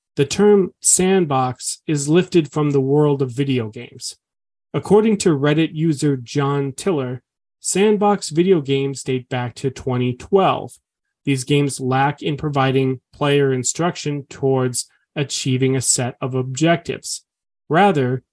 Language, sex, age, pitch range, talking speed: English, male, 30-49, 130-170 Hz, 125 wpm